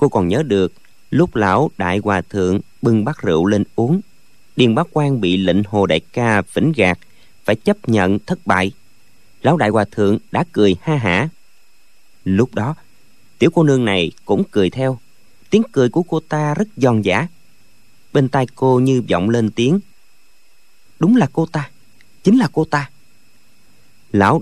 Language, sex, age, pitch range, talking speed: Vietnamese, male, 30-49, 105-145 Hz, 170 wpm